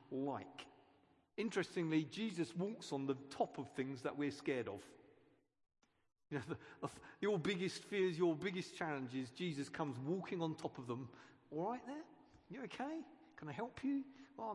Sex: male